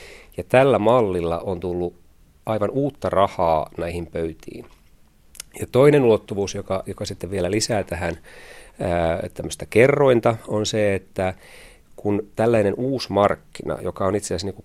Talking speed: 130 wpm